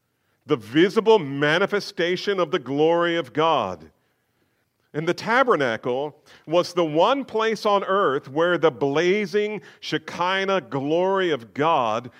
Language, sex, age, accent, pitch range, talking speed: English, male, 50-69, American, 120-165 Hz, 120 wpm